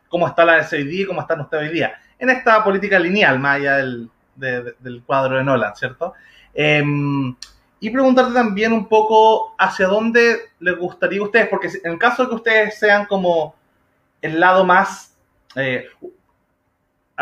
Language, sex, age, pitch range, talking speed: Spanish, male, 20-39, 140-195 Hz, 165 wpm